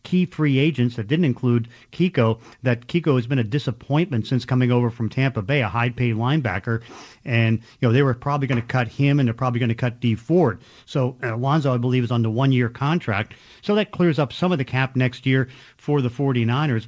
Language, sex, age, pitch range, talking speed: English, male, 40-59, 120-145 Hz, 225 wpm